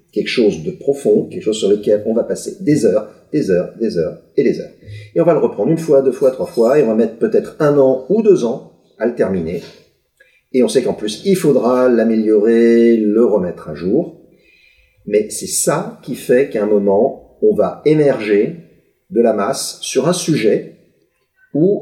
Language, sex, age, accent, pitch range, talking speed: French, male, 50-69, French, 105-175 Hz, 205 wpm